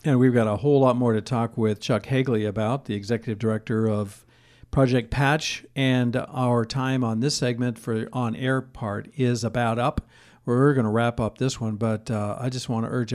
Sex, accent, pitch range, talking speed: male, American, 115-135 Hz, 210 wpm